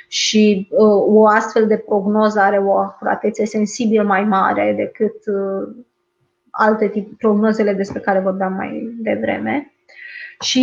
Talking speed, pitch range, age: 130 wpm, 205-240 Hz, 20-39